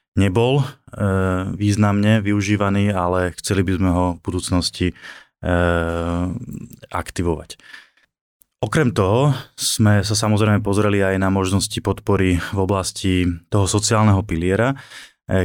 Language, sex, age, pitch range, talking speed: Slovak, male, 20-39, 90-105 Hz, 115 wpm